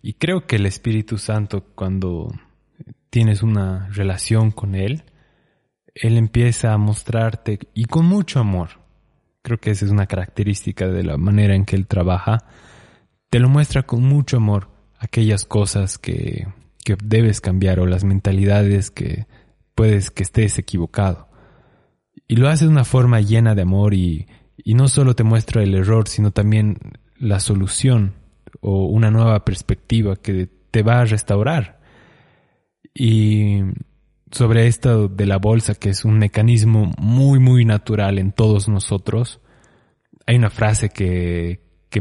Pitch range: 95-115 Hz